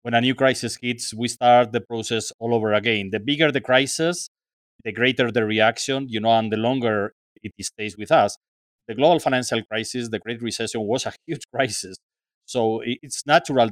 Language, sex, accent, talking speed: English, male, Mexican, 190 wpm